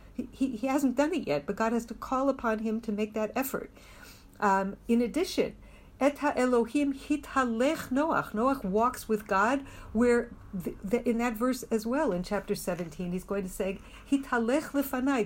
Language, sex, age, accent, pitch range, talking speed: English, female, 60-79, American, 195-255 Hz, 175 wpm